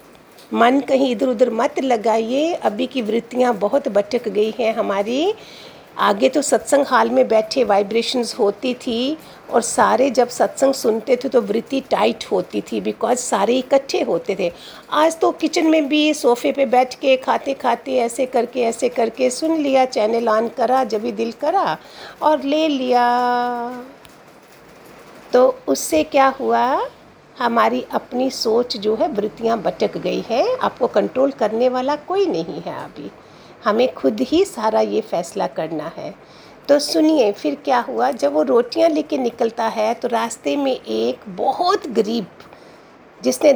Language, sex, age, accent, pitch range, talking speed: Hindi, female, 50-69, native, 230-275 Hz, 155 wpm